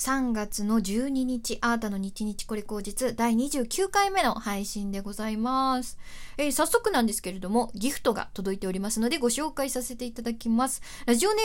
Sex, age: female, 20-39